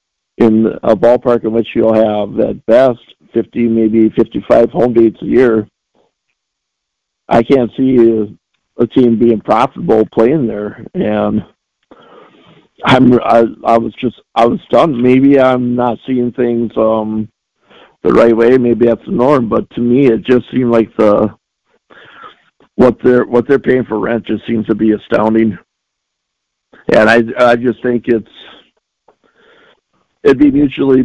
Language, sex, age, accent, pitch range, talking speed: English, male, 50-69, American, 110-120 Hz, 150 wpm